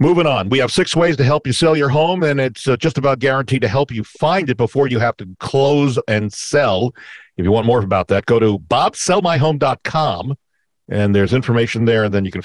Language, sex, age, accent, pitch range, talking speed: English, male, 50-69, American, 100-140 Hz, 225 wpm